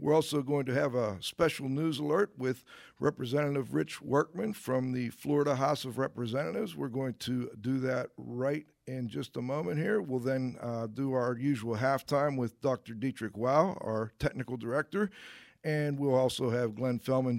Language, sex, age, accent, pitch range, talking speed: English, male, 50-69, American, 120-145 Hz, 175 wpm